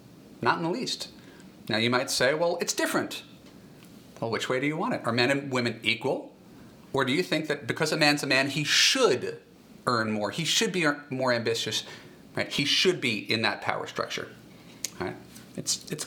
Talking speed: 200 wpm